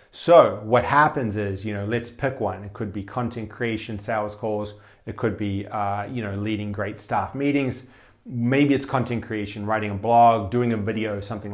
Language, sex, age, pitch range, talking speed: English, male, 30-49, 105-125 Hz, 200 wpm